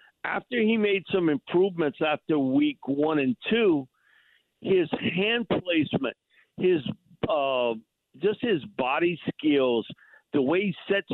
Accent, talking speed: American, 125 wpm